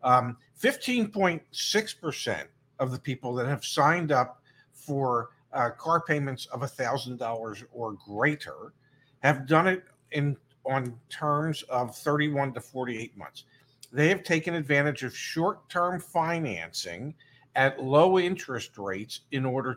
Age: 50-69